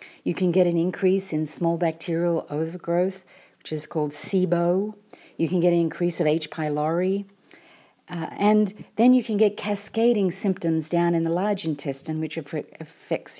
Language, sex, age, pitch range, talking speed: English, female, 50-69, 155-185 Hz, 160 wpm